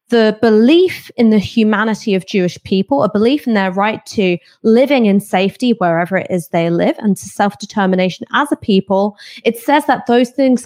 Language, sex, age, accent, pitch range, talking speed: English, female, 20-39, British, 185-230 Hz, 185 wpm